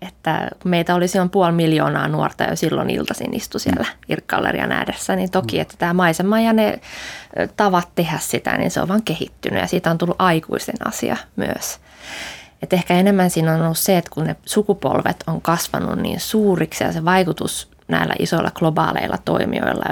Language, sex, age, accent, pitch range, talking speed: Finnish, female, 20-39, native, 155-185 Hz, 180 wpm